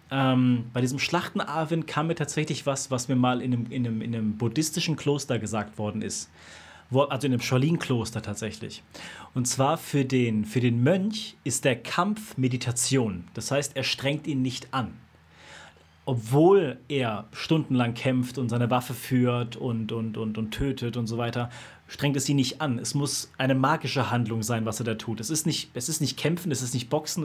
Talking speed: 190 wpm